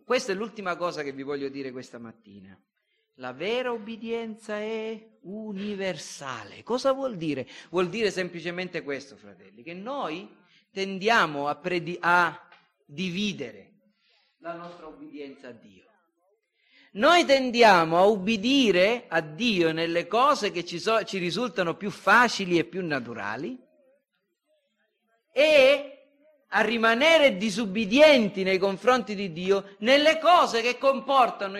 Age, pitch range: 40-59, 175-275 Hz